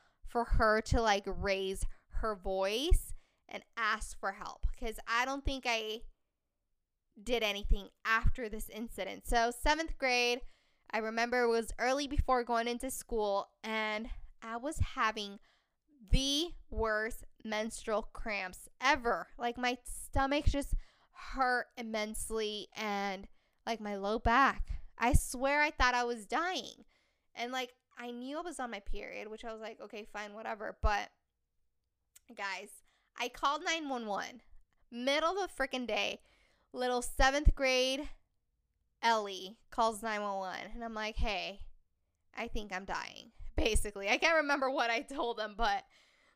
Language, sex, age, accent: English, female, 10-29, American